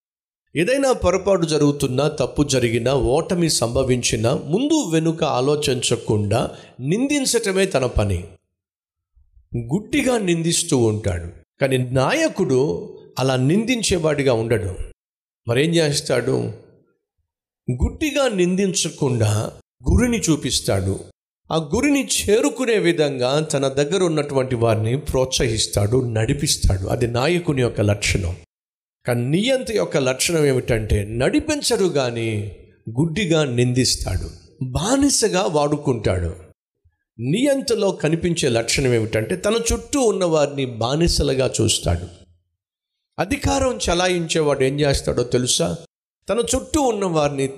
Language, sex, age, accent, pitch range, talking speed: Telugu, male, 50-69, native, 115-185 Hz, 85 wpm